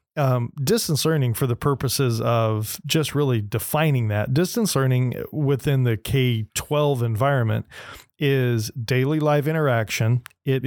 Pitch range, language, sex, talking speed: 120-145 Hz, English, male, 130 wpm